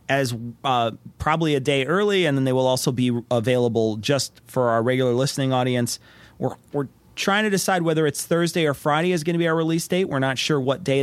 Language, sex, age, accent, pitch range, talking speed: English, male, 30-49, American, 125-155 Hz, 225 wpm